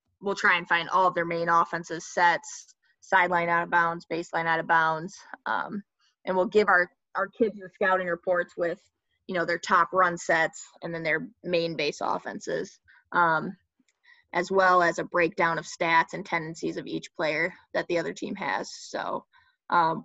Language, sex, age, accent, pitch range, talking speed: English, female, 20-39, American, 170-200 Hz, 185 wpm